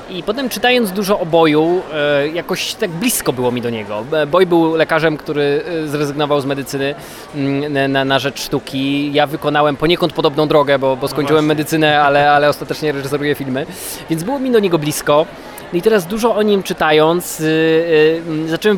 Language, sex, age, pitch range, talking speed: Polish, male, 20-39, 140-160 Hz, 155 wpm